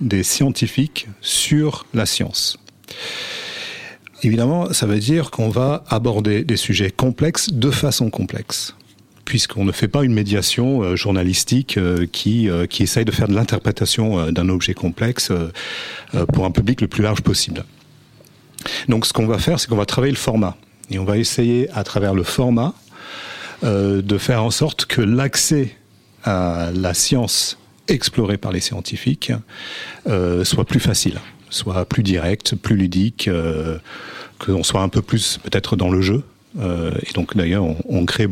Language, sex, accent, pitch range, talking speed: French, male, French, 90-120 Hz, 165 wpm